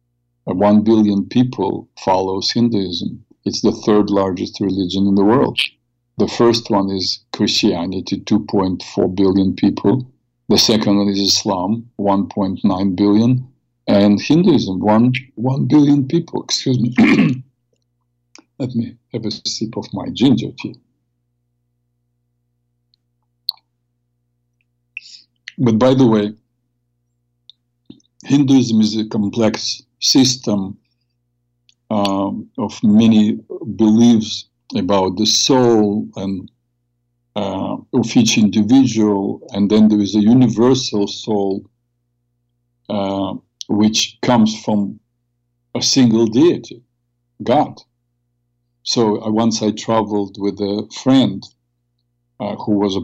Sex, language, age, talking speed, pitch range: male, English, 50-69, 110 wpm, 105-120 Hz